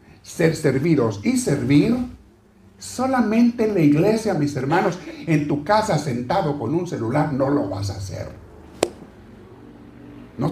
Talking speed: 130 wpm